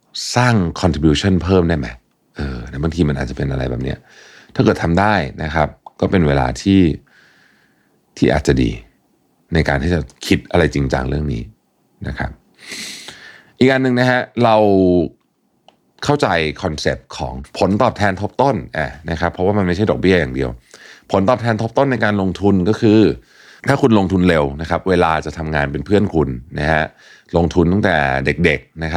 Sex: male